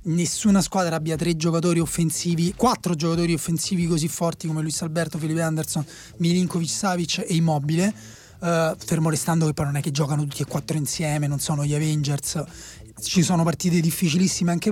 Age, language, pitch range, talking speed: 30-49, Italian, 160-185 Hz, 165 wpm